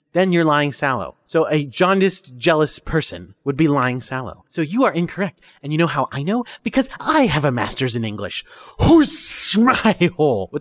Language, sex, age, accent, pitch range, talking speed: English, male, 30-49, American, 125-205 Hz, 190 wpm